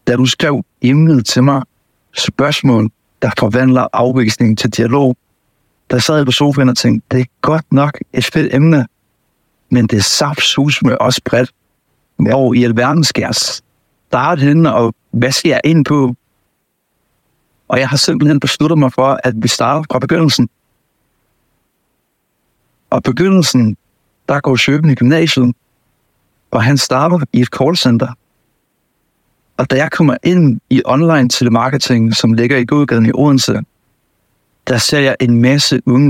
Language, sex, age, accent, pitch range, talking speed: Danish, male, 60-79, native, 120-145 Hz, 150 wpm